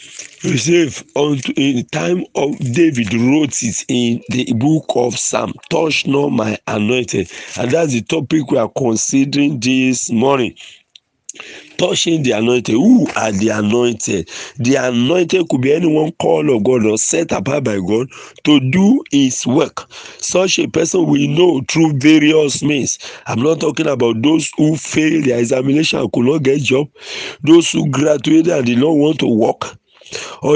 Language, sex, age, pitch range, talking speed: English, male, 50-69, 130-170 Hz, 165 wpm